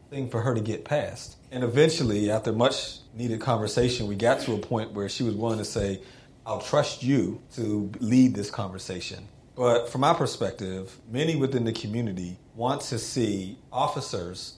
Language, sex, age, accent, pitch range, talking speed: English, male, 40-59, American, 100-125 Hz, 170 wpm